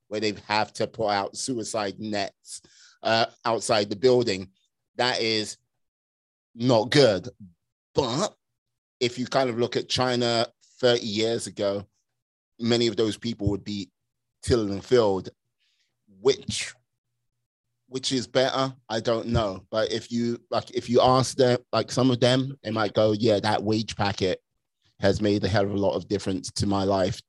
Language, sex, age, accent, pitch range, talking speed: English, male, 30-49, British, 100-125 Hz, 165 wpm